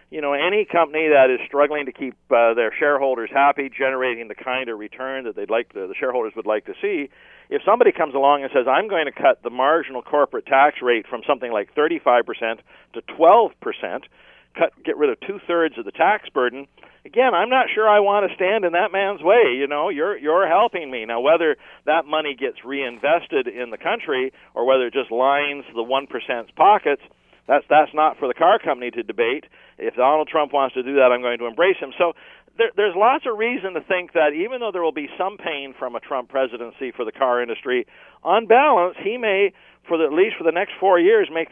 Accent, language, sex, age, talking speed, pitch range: American, English, male, 50-69, 220 wpm, 140-215 Hz